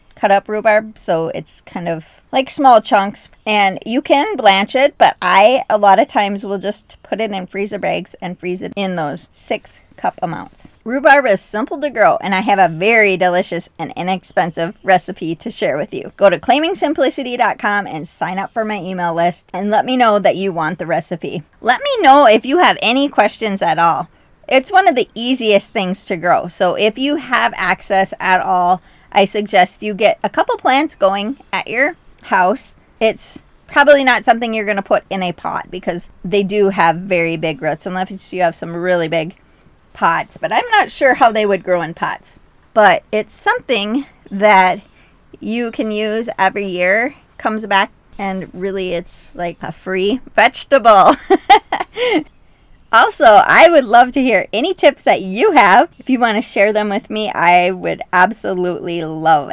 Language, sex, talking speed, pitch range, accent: English, female, 185 wpm, 185-260 Hz, American